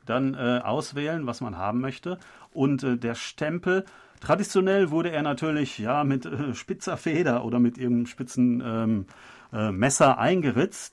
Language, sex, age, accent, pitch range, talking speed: German, male, 40-59, German, 120-145 Hz, 155 wpm